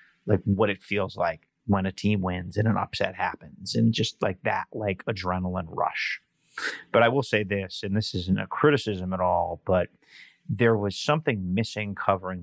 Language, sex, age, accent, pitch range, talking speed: English, male, 30-49, American, 95-115 Hz, 185 wpm